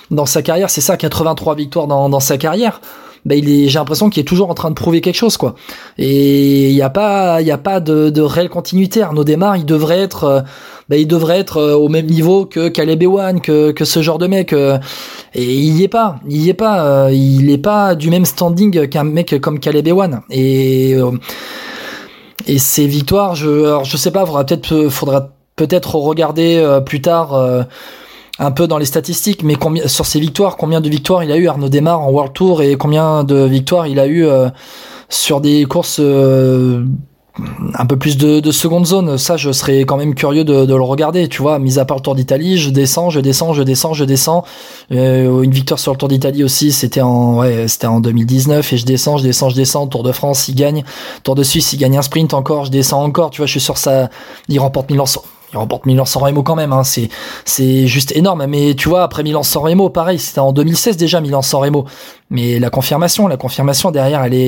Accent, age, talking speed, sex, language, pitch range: French, 20-39, 225 wpm, male, French, 135-165 Hz